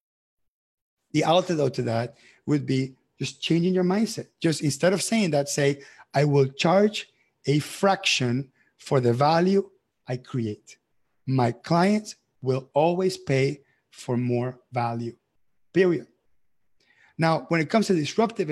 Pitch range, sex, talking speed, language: 130-175 Hz, male, 135 wpm, English